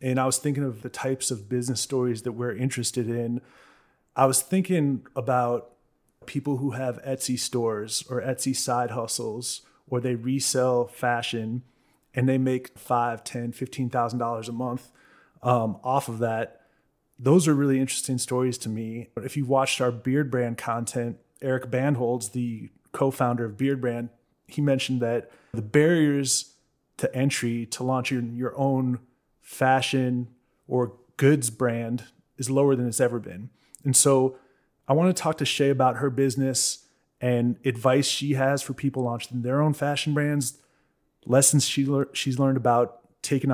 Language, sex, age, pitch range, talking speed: English, male, 30-49, 120-140 Hz, 160 wpm